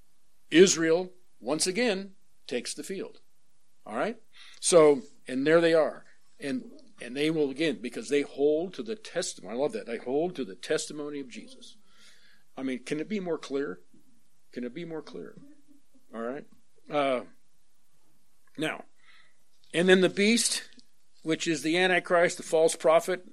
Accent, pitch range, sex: American, 145-195 Hz, male